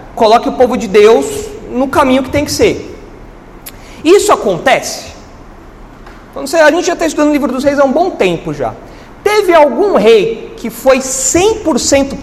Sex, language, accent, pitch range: male, Portuguese, Brazilian, 200-335 Hz